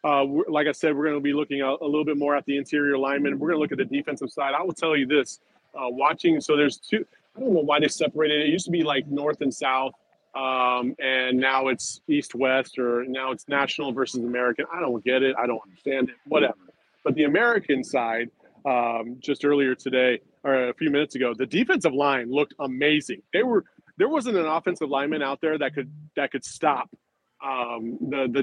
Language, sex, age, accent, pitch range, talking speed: English, male, 30-49, American, 130-150 Hz, 230 wpm